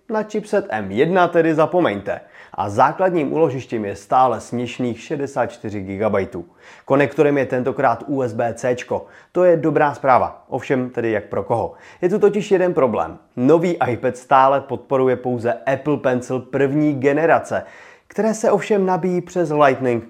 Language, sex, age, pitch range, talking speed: Czech, male, 30-49, 115-165 Hz, 140 wpm